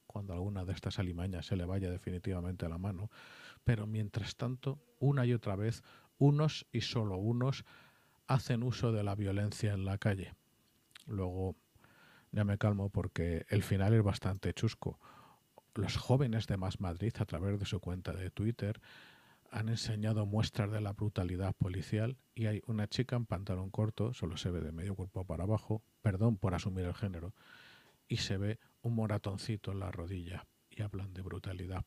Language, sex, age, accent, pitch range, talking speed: Spanish, male, 40-59, Spanish, 95-110 Hz, 175 wpm